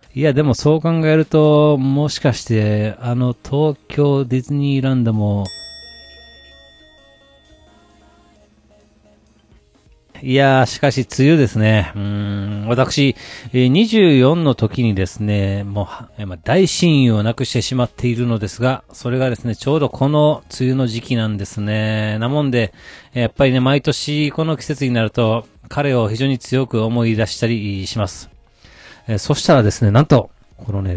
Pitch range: 105-140 Hz